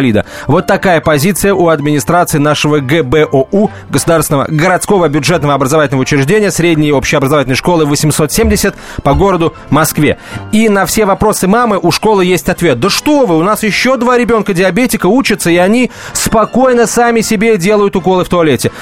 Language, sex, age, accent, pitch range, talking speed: Russian, male, 30-49, native, 150-195 Hz, 150 wpm